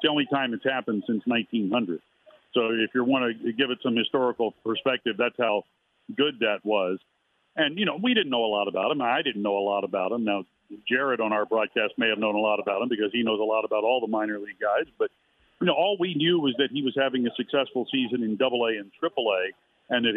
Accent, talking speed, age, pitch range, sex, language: American, 250 wpm, 50-69, 115-140 Hz, male, English